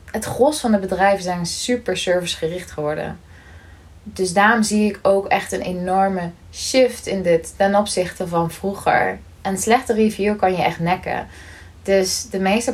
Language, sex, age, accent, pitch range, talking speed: Dutch, female, 20-39, Dutch, 185-230 Hz, 165 wpm